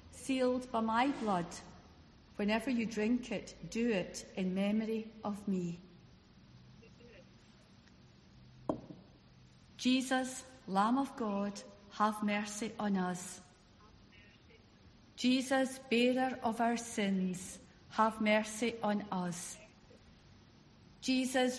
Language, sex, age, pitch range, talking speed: English, female, 50-69, 190-235 Hz, 90 wpm